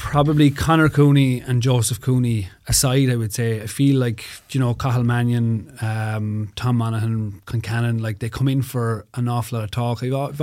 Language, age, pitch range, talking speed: English, 30-49, 115-145 Hz, 185 wpm